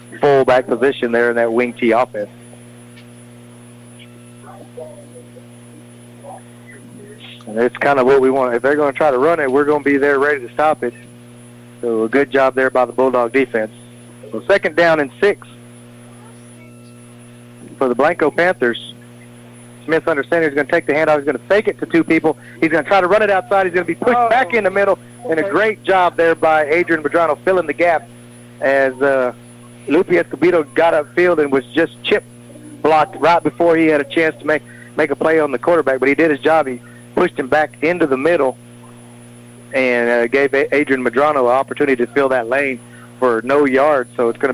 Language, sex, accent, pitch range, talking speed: English, male, American, 120-150 Hz, 200 wpm